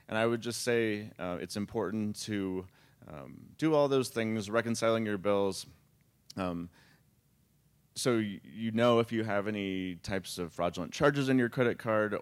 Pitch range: 100-120 Hz